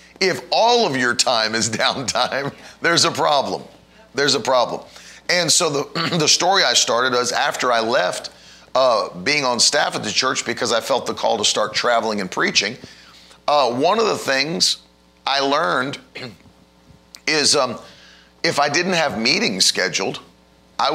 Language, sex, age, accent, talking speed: English, male, 40-59, American, 165 wpm